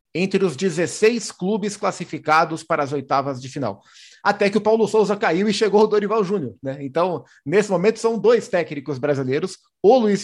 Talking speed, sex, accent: 180 wpm, male, Brazilian